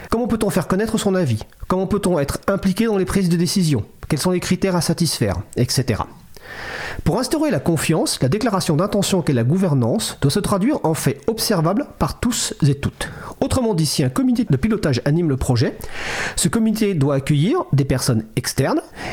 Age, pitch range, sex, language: 40-59, 135-195 Hz, male, French